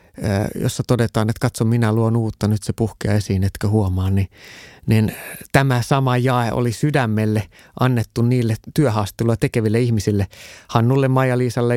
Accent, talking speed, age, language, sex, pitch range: native, 140 wpm, 30-49, Finnish, male, 110-130 Hz